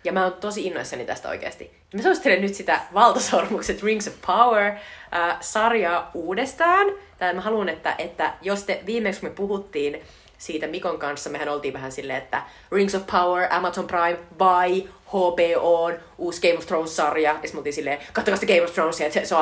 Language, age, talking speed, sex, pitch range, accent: Finnish, 30-49, 165 wpm, female, 155-215 Hz, native